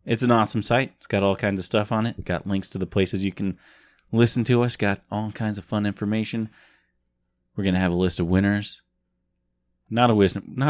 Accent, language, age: American, English, 30-49